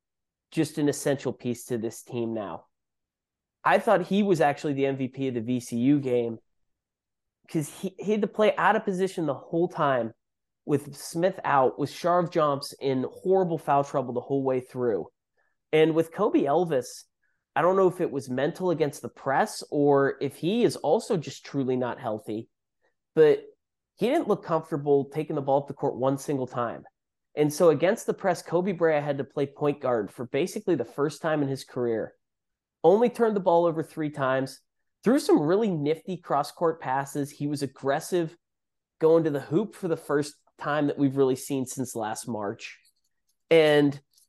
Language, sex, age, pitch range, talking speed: English, male, 30-49, 130-170 Hz, 180 wpm